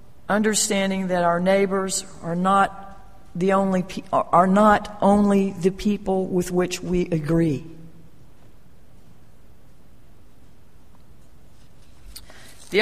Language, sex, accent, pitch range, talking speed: English, female, American, 165-205 Hz, 90 wpm